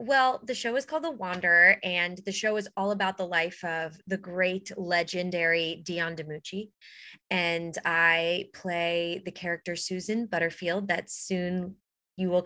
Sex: female